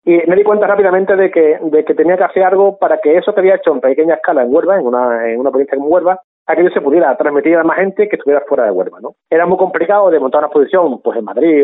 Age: 30-49